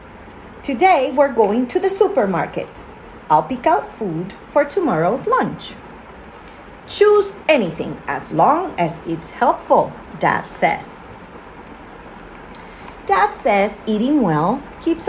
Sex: female